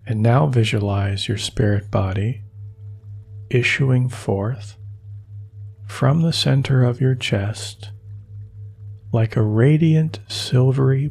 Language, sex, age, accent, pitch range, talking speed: English, male, 40-59, American, 100-115 Hz, 95 wpm